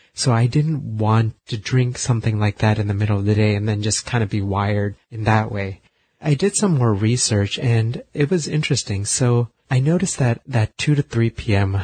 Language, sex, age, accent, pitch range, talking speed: English, male, 30-49, American, 105-130 Hz, 220 wpm